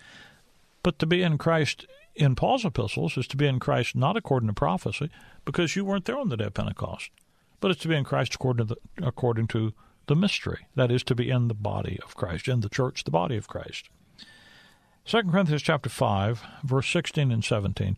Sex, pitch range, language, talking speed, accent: male, 120-170 Hz, English, 210 wpm, American